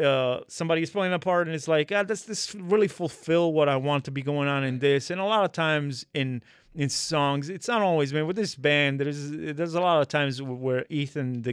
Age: 30-49